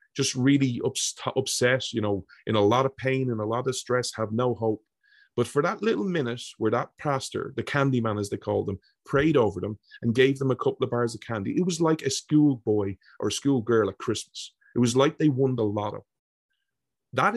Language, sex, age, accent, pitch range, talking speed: English, male, 30-49, Irish, 115-135 Hz, 230 wpm